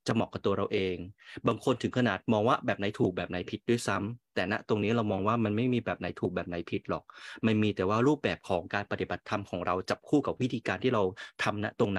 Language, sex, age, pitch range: Thai, male, 30-49, 95-120 Hz